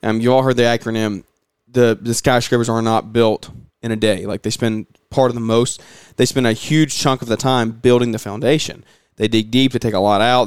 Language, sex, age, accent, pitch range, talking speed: English, male, 20-39, American, 110-135 Hz, 235 wpm